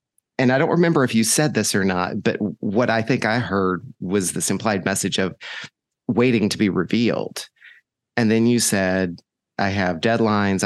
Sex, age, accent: male, 30-49, American